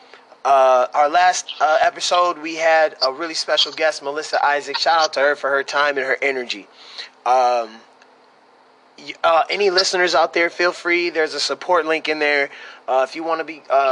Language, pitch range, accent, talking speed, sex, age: English, 140-175 Hz, American, 190 wpm, male, 20-39